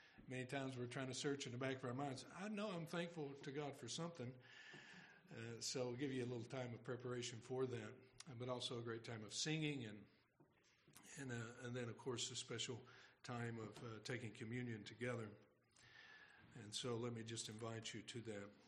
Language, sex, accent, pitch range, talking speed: English, male, American, 120-140 Hz, 200 wpm